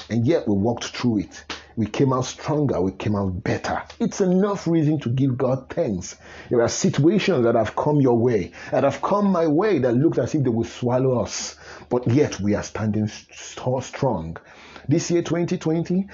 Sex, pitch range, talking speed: male, 95-135 Hz, 195 wpm